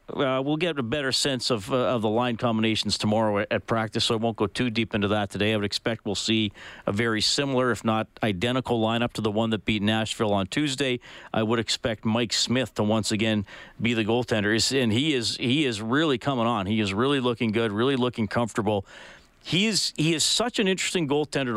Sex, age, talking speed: male, 40-59, 225 wpm